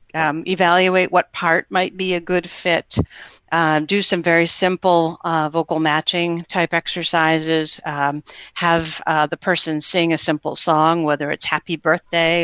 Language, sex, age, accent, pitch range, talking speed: English, female, 50-69, American, 165-195 Hz, 155 wpm